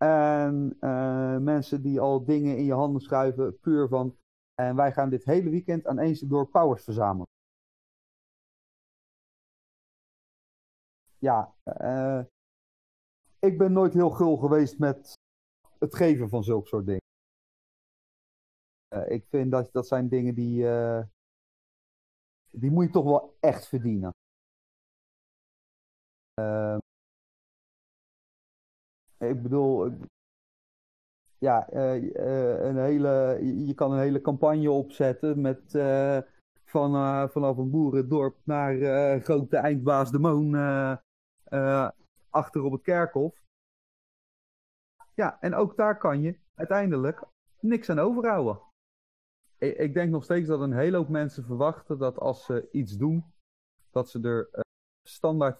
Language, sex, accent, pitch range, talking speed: Dutch, male, Dutch, 125-150 Hz, 125 wpm